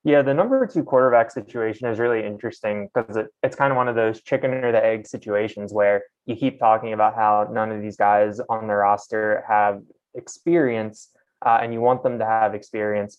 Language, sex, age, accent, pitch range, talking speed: English, male, 20-39, American, 100-110 Hz, 200 wpm